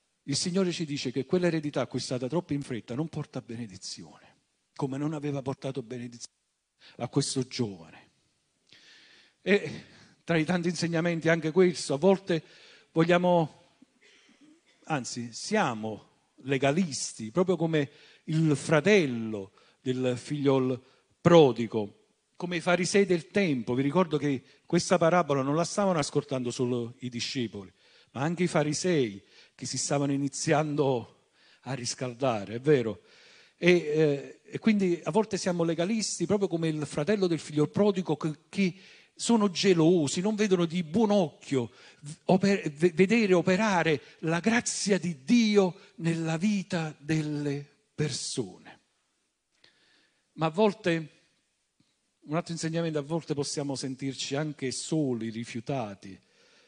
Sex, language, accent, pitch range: male, Italian, native, 135-180 Hz